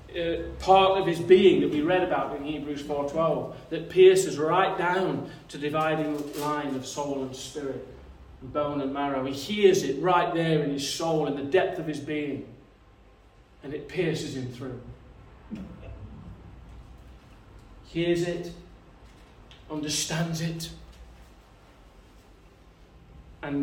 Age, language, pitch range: 30-49, English, 130-170 Hz